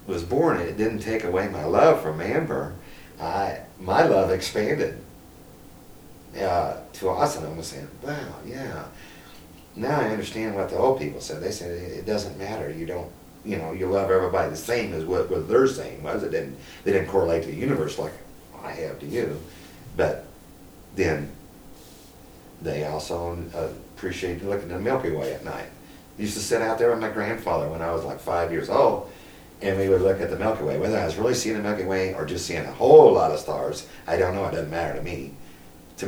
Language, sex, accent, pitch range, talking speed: English, male, American, 80-100 Hz, 210 wpm